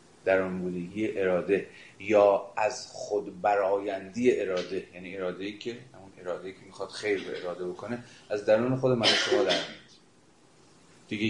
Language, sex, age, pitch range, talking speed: Persian, male, 30-49, 95-120 Hz, 140 wpm